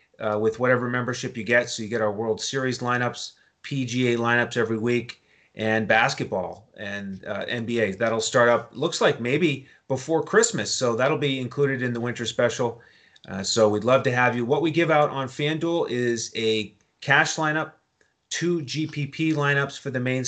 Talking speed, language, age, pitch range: 180 wpm, English, 30-49, 115-135 Hz